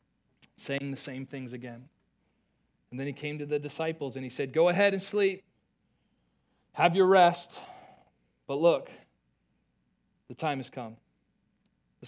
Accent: American